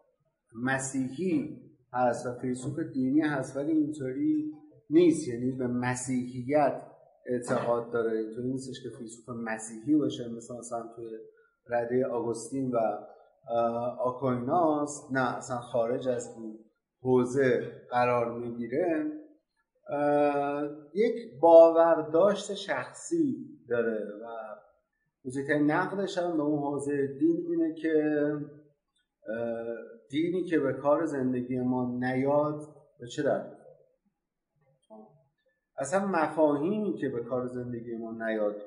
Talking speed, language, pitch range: 100 wpm, Persian, 120-175 Hz